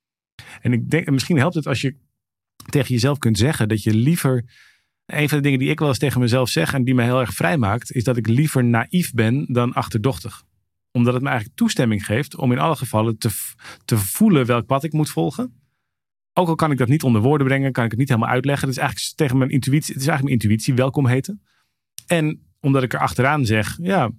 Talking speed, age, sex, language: 230 wpm, 40-59, male, Dutch